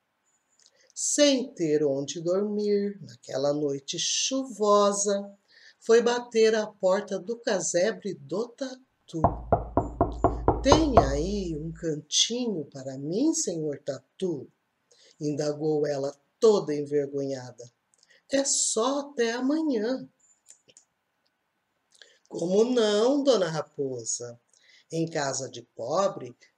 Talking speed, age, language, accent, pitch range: 95 wpm, 50-69, Portuguese, Brazilian, 155-255 Hz